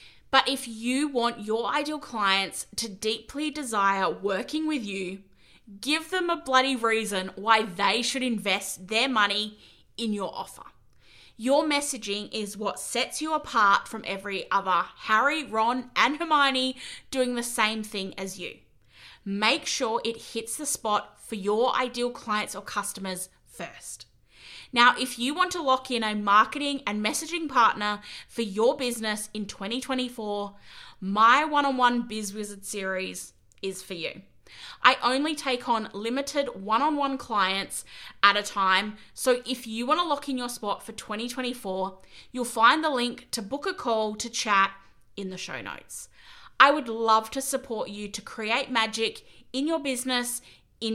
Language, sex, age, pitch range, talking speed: English, female, 20-39, 205-260 Hz, 155 wpm